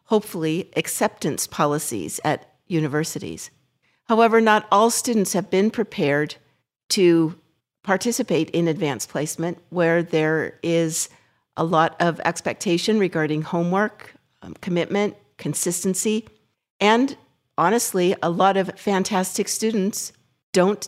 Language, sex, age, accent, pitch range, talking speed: English, female, 50-69, American, 165-205 Hz, 105 wpm